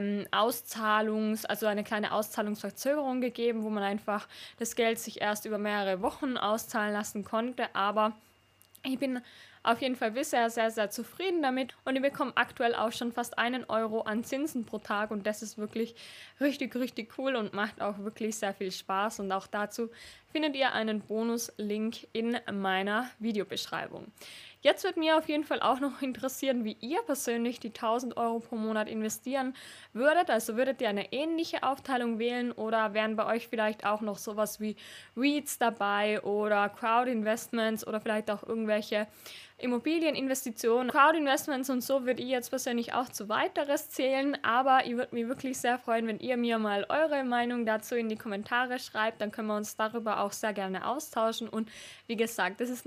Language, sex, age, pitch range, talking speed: German, female, 20-39, 215-255 Hz, 175 wpm